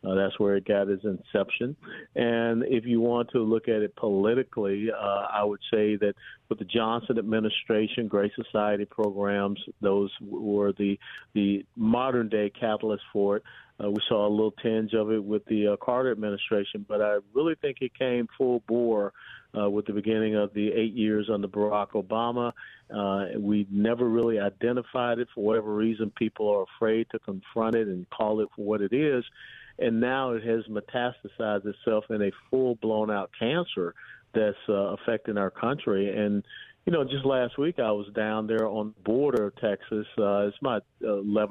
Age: 40-59